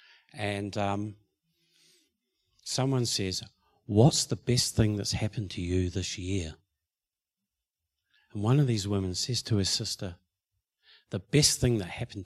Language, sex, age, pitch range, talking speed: English, male, 50-69, 100-130 Hz, 135 wpm